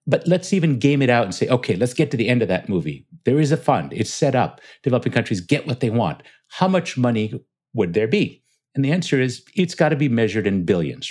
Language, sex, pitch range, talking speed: English, male, 95-130 Hz, 255 wpm